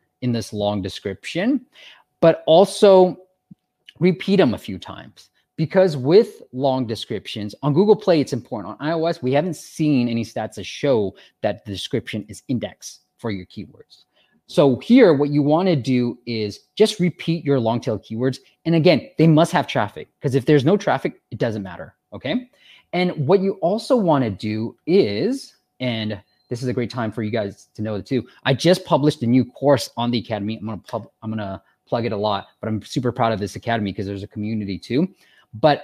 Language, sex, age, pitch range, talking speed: English, male, 20-39, 110-160 Hz, 200 wpm